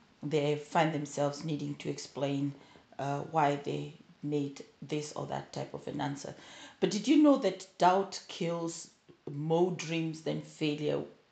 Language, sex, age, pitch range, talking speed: English, female, 40-59, 165-210 Hz, 150 wpm